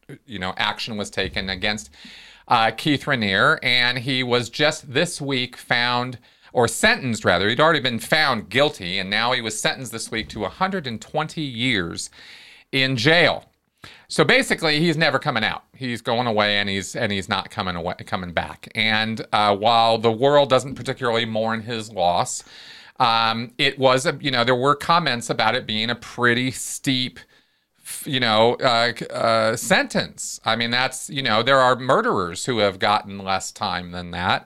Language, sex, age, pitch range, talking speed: English, male, 40-59, 105-145 Hz, 170 wpm